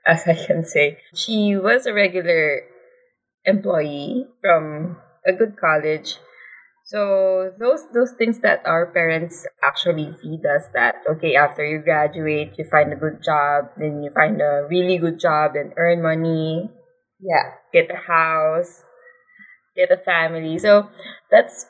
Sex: female